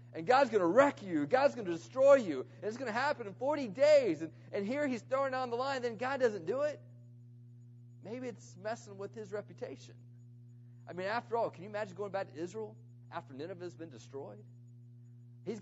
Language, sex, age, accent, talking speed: English, male, 40-59, American, 210 wpm